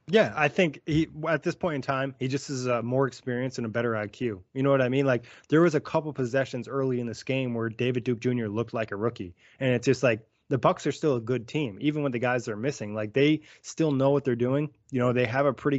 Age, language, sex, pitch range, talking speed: 20-39, English, male, 120-140 Hz, 270 wpm